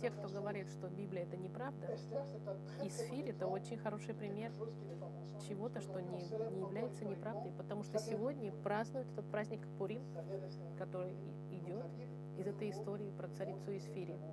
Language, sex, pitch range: French, female, 155-195 Hz